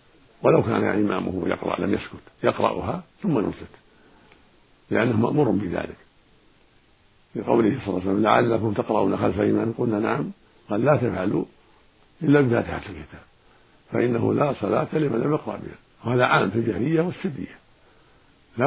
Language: Arabic